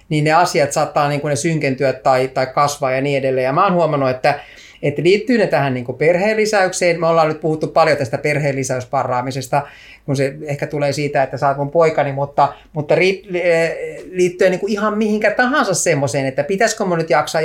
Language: Finnish